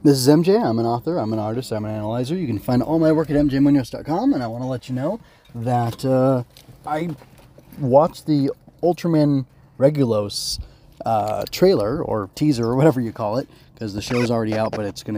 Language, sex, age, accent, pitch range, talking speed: English, male, 20-39, American, 115-145 Hz, 205 wpm